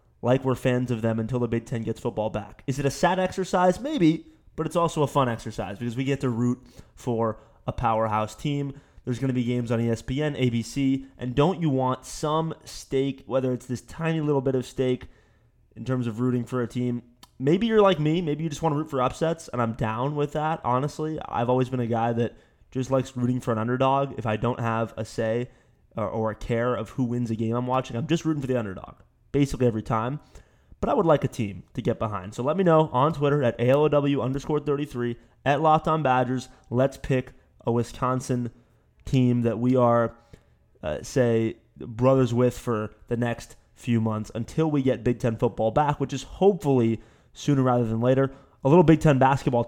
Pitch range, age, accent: 115-140 Hz, 20-39, American